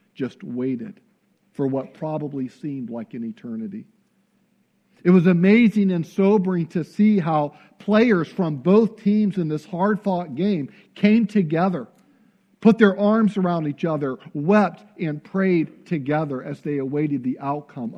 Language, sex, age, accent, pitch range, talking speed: English, male, 50-69, American, 155-205 Hz, 140 wpm